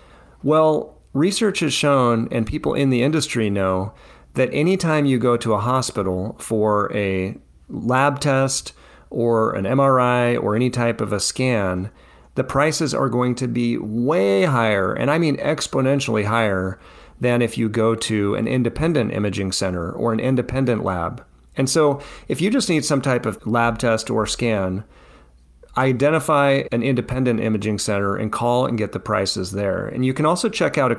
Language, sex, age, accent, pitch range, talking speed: English, male, 40-59, American, 105-135 Hz, 170 wpm